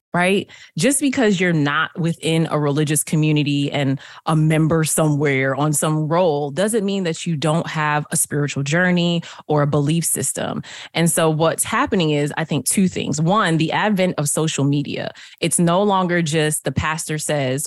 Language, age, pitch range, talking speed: English, 20-39, 155-205 Hz, 175 wpm